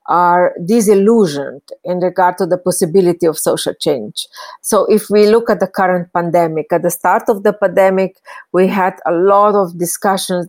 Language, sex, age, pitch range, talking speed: English, female, 40-59, 175-195 Hz, 170 wpm